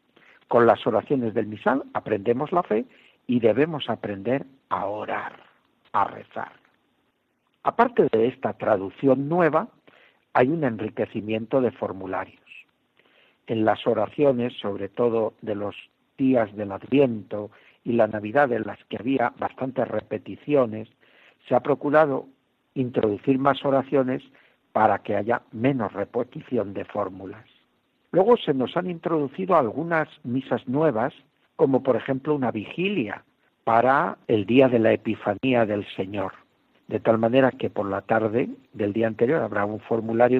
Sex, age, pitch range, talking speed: male, 60-79, 110-140 Hz, 135 wpm